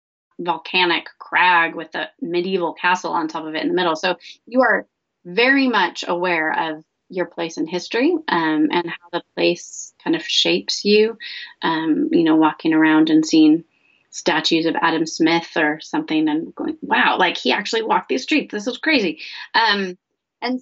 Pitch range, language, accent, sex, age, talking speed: 170-235 Hz, English, American, female, 30-49, 175 wpm